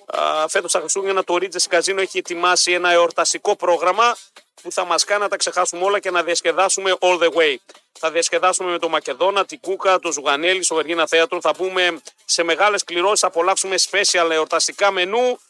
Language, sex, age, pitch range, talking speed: Greek, male, 40-59, 170-205 Hz, 180 wpm